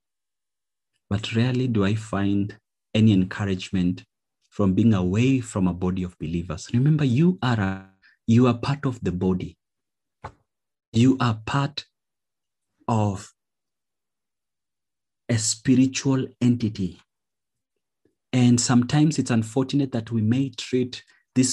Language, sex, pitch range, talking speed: English, male, 95-125 Hz, 115 wpm